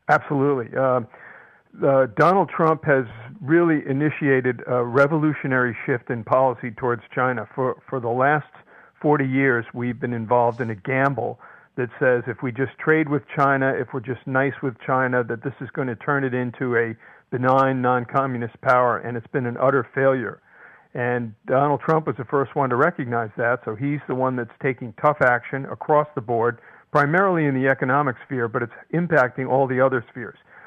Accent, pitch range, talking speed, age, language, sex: American, 125-145 Hz, 180 wpm, 50-69, English, male